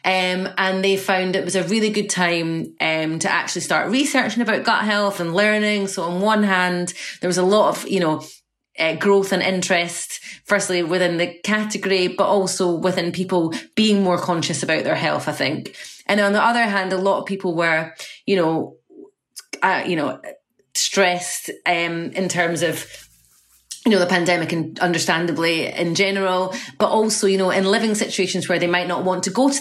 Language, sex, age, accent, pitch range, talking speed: English, female, 30-49, British, 170-200 Hz, 190 wpm